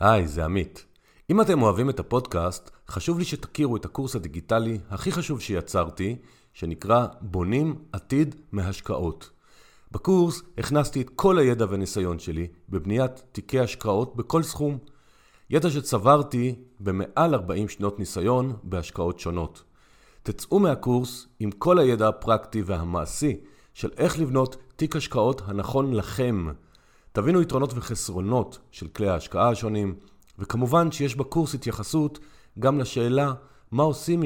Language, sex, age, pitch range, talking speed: Hebrew, male, 40-59, 100-140 Hz, 125 wpm